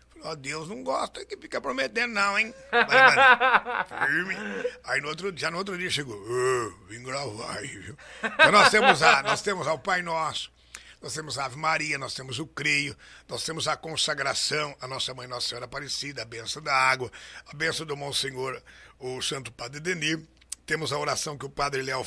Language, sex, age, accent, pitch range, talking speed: Portuguese, male, 60-79, Brazilian, 130-165 Hz, 190 wpm